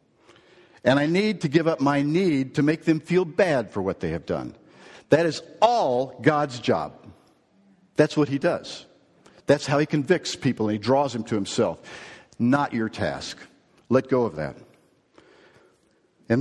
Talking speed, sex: 170 wpm, male